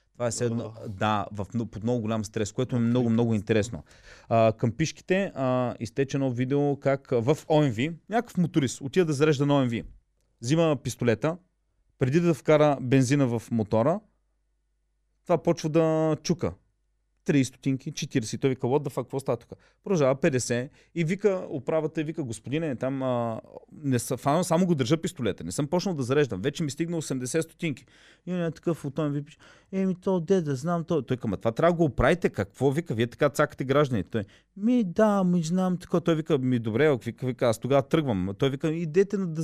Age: 30-49